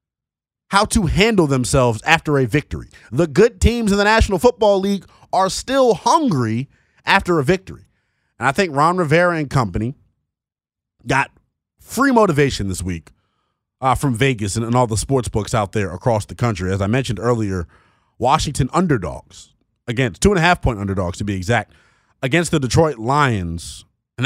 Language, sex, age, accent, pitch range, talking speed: English, male, 30-49, American, 115-175 Hz, 170 wpm